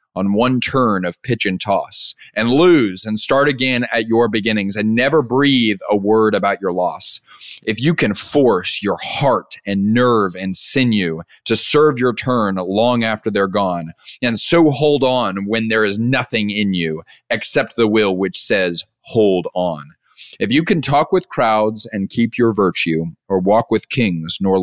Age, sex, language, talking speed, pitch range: 30-49, male, English, 180 wpm, 95-125 Hz